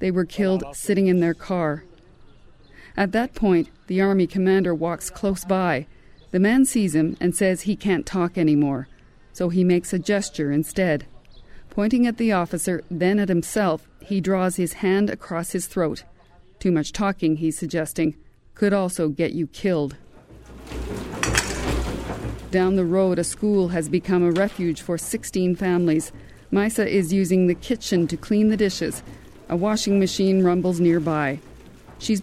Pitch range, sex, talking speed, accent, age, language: 170-205 Hz, female, 155 wpm, American, 40-59, English